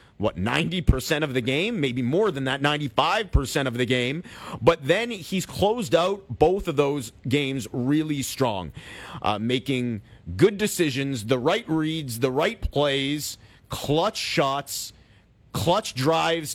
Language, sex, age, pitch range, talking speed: English, male, 40-59, 125-160 Hz, 140 wpm